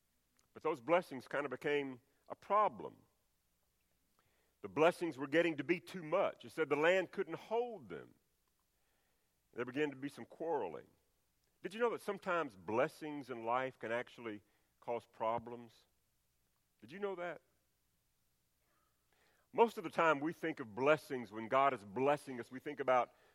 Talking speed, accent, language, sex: 155 wpm, American, English, male